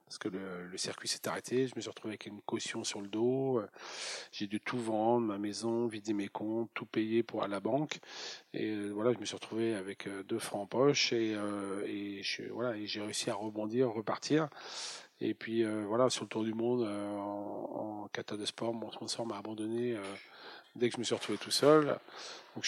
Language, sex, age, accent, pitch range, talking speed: French, male, 40-59, French, 105-125 Hz, 230 wpm